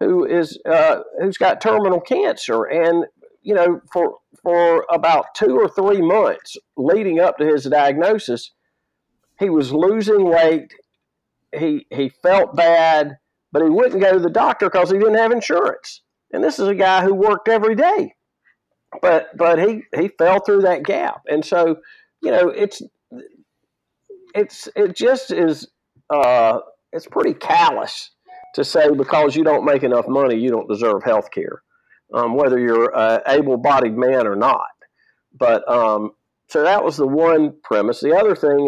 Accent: American